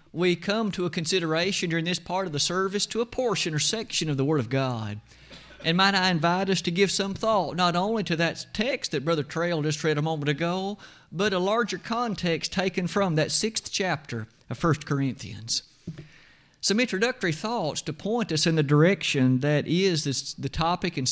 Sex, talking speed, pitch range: male, 195 wpm, 155-195 Hz